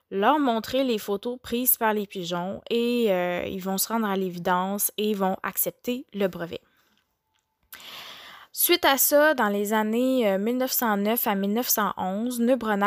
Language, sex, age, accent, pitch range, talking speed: French, female, 20-39, Canadian, 195-240 Hz, 135 wpm